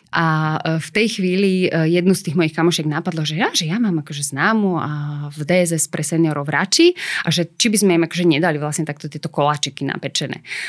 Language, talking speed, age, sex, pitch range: Slovak, 200 wpm, 30-49, female, 155-185 Hz